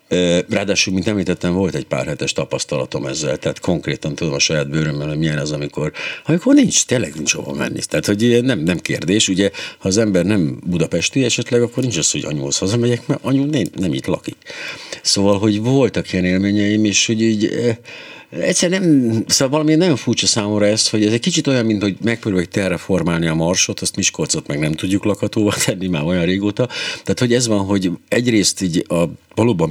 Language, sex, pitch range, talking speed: Hungarian, male, 85-120 Hz, 190 wpm